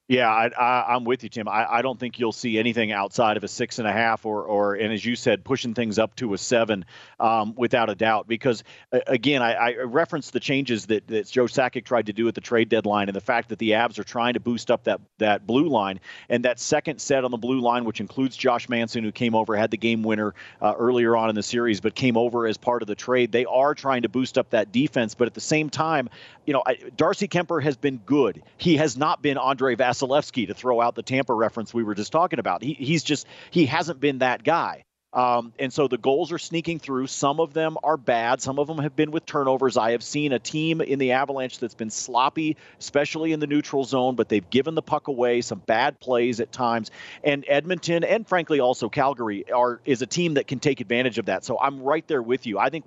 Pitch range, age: 115-145 Hz, 40-59